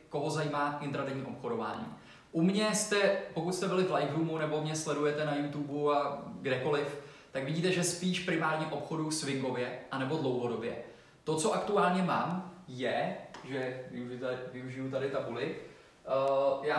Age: 20-39